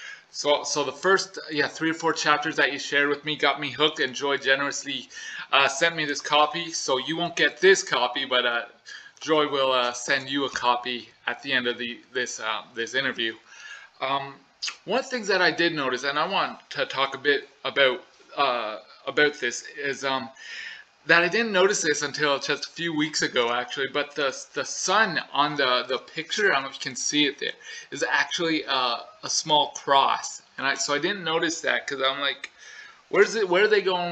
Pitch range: 140-185 Hz